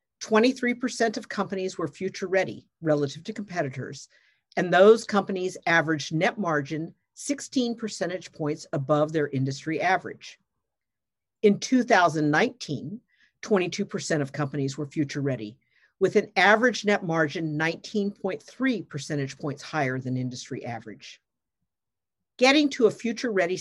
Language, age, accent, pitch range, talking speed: English, 50-69, American, 150-215 Hz, 110 wpm